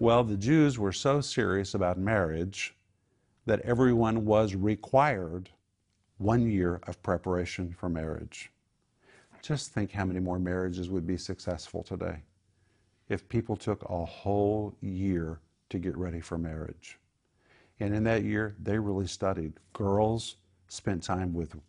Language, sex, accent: English, male, American